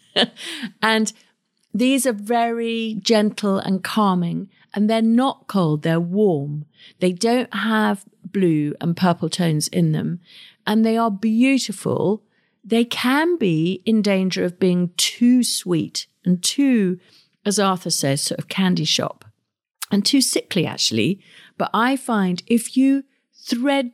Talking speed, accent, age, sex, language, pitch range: 135 wpm, British, 50-69, female, English, 180-225 Hz